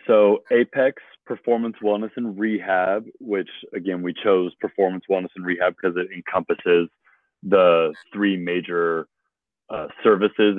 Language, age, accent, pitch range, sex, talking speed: English, 30-49, American, 85-100 Hz, male, 125 wpm